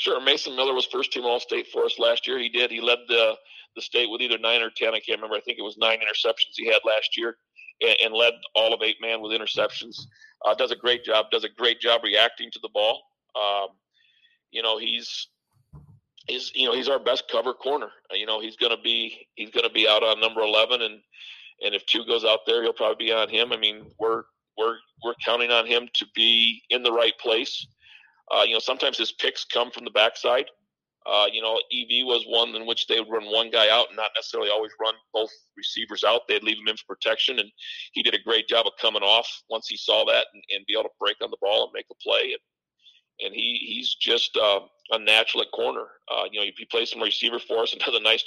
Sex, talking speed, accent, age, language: male, 245 wpm, American, 50-69, English